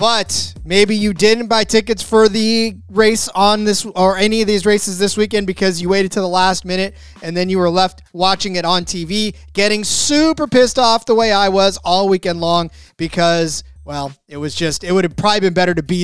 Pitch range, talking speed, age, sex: 175-215 Hz, 215 wpm, 20-39, male